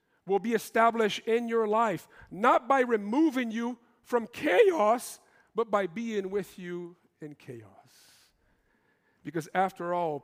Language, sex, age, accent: English, male, 50-69, American